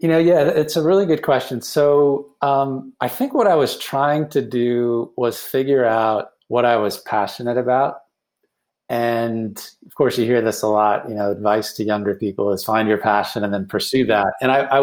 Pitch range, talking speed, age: 110-130 Hz, 205 wpm, 30-49